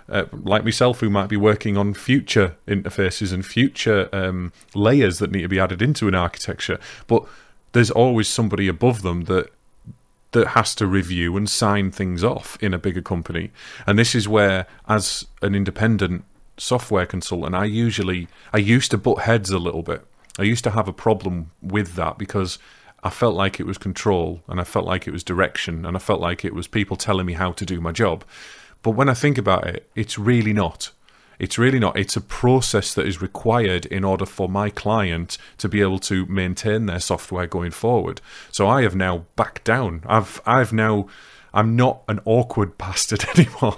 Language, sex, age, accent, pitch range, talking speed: English, male, 30-49, British, 95-115 Hz, 195 wpm